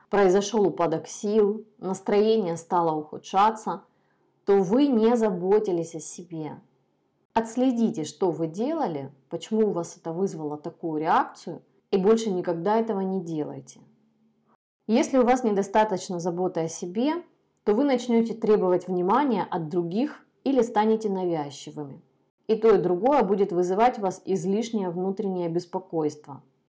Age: 30-49